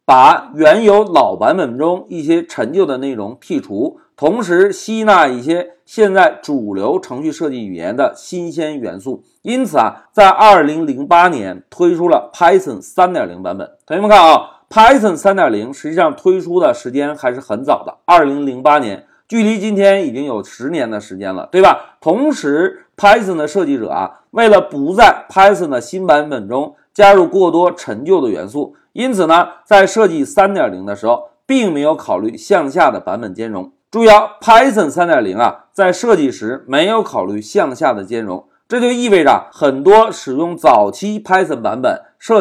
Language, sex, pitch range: Chinese, male, 155-245 Hz